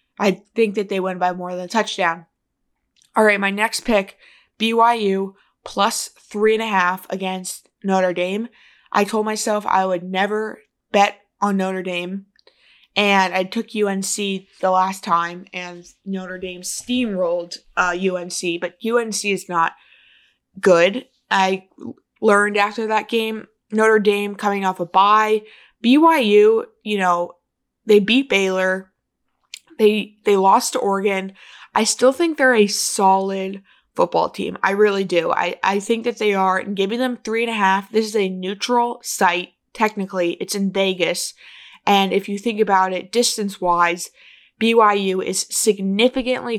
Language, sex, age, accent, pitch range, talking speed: English, female, 20-39, American, 185-220 Hz, 150 wpm